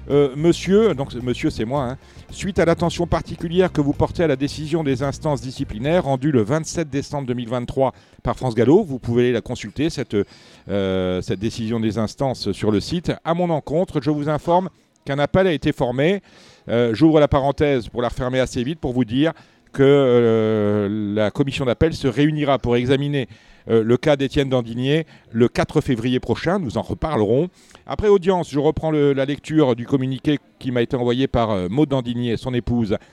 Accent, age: French, 40-59